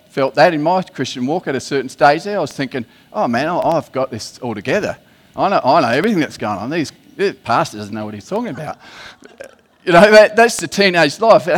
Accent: Australian